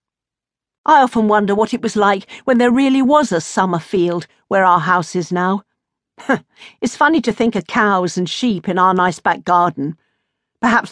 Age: 50-69